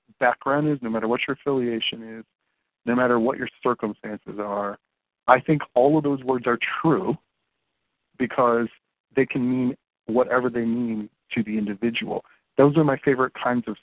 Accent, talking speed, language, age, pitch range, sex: American, 165 wpm, English, 40-59, 110-135 Hz, male